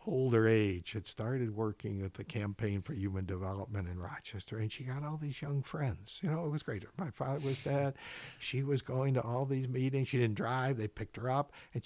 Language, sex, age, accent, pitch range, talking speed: English, male, 60-79, American, 110-140 Hz, 225 wpm